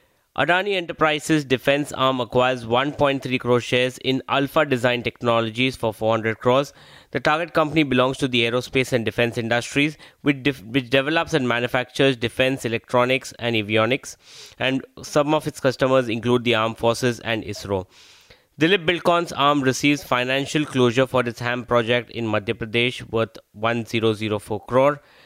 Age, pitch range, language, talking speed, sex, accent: 20-39, 115-145 Hz, English, 145 wpm, male, Indian